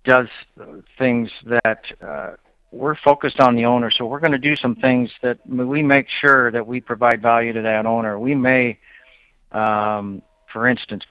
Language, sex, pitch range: English, male, 110-125 Hz